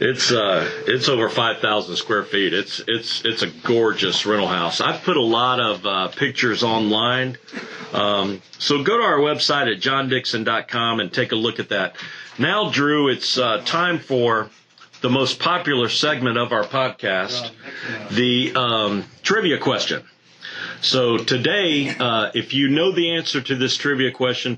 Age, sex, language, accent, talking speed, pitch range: 50-69, male, English, American, 160 wpm, 120-140 Hz